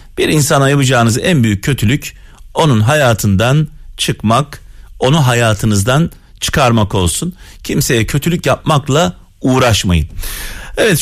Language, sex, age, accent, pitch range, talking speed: Turkish, male, 40-59, native, 100-140 Hz, 100 wpm